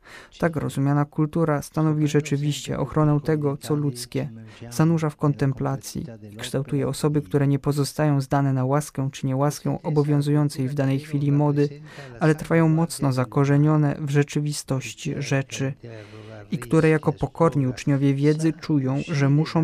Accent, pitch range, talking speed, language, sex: native, 135-150 Hz, 135 wpm, Polish, male